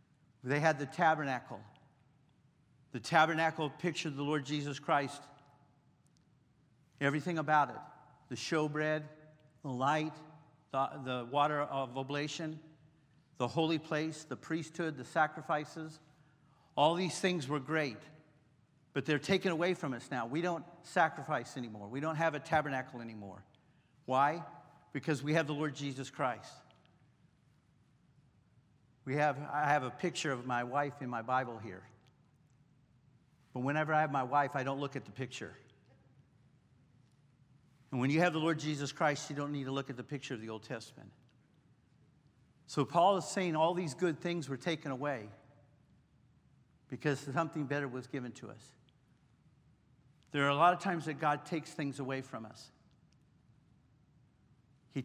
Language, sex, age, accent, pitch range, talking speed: English, male, 50-69, American, 135-155 Hz, 150 wpm